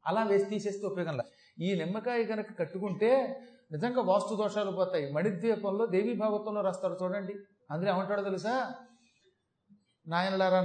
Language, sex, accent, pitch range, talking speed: Telugu, male, native, 180-225 Hz, 125 wpm